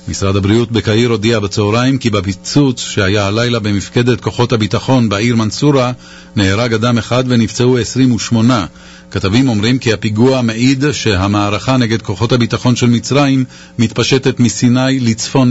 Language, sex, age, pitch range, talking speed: English, male, 40-59, 110-130 Hz, 130 wpm